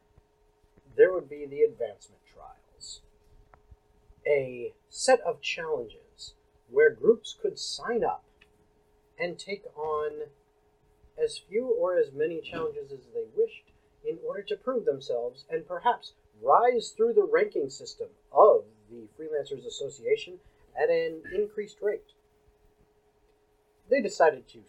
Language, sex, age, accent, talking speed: English, male, 40-59, American, 120 wpm